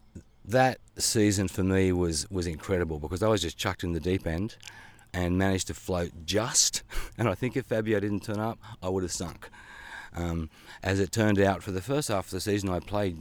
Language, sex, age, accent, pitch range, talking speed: English, male, 40-59, Australian, 90-100 Hz, 215 wpm